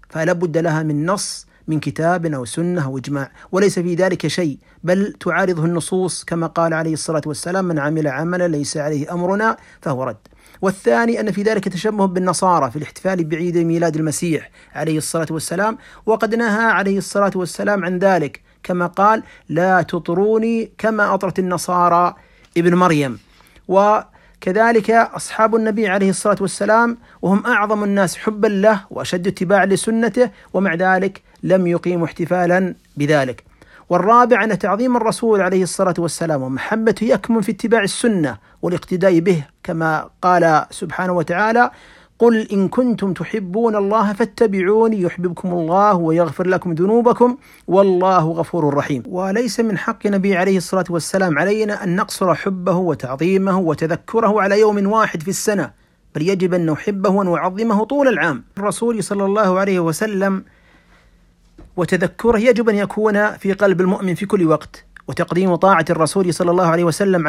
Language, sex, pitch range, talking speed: Arabic, male, 170-210 Hz, 140 wpm